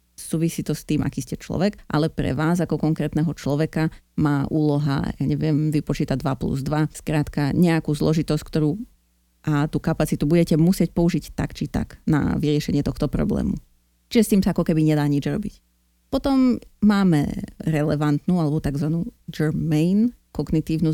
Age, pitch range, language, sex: 30-49, 150-180 Hz, Slovak, female